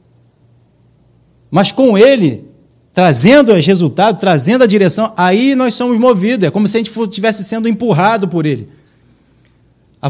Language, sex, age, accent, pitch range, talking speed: Portuguese, male, 40-59, Brazilian, 140-220 Hz, 145 wpm